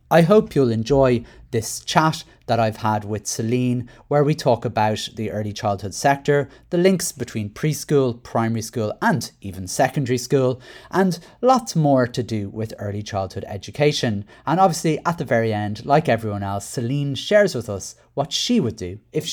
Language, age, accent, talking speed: English, 30-49, British, 175 wpm